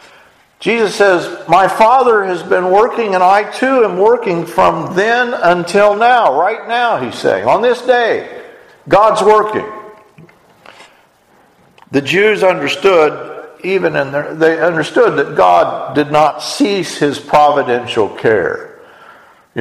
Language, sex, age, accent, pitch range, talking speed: English, male, 50-69, American, 155-240 Hz, 130 wpm